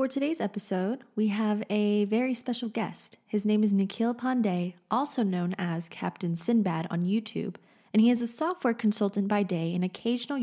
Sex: female